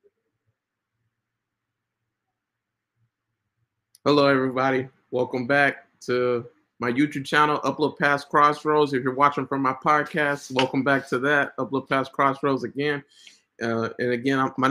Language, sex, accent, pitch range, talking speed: English, male, American, 125-140 Hz, 120 wpm